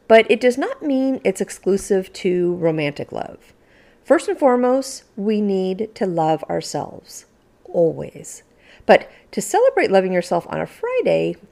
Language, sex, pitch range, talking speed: English, female, 170-245 Hz, 140 wpm